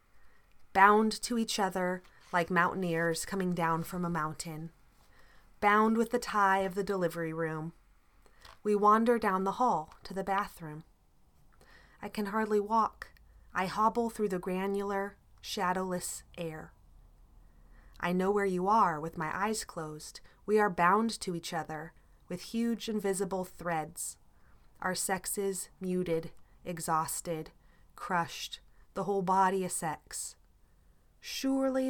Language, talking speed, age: English, 130 wpm, 30-49